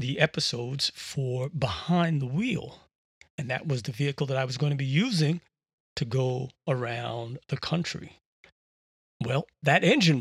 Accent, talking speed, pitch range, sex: American, 155 wpm, 125-145 Hz, male